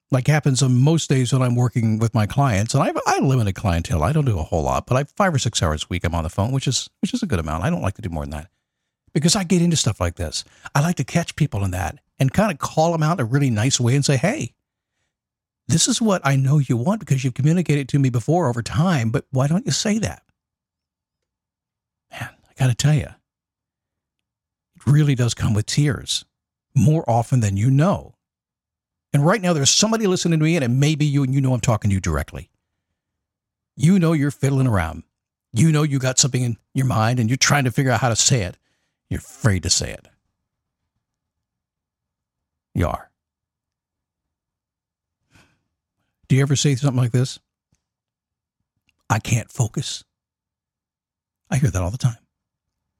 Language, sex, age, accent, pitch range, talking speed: English, male, 50-69, American, 105-145 Hz, 210 wpm